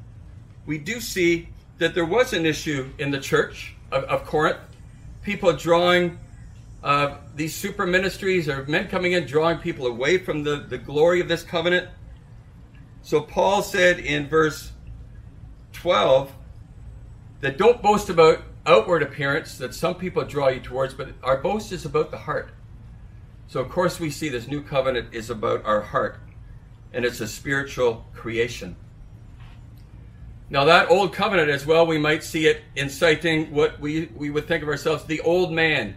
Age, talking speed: 50-69, 160 wpm